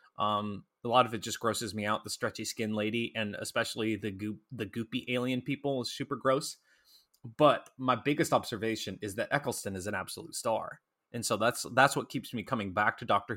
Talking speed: 205 wpm